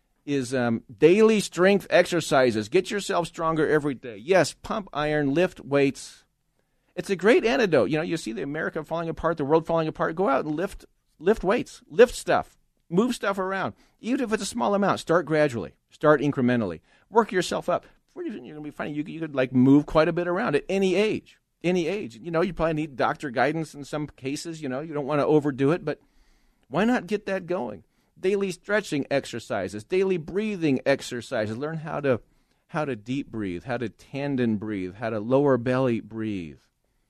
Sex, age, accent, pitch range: male, 40-59, American, 130-170 Hz